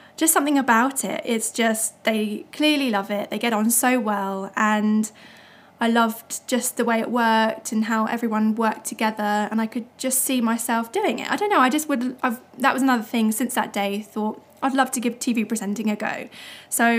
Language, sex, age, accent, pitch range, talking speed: English, female, 10-29, British, 215-255 Hz, 210 wpm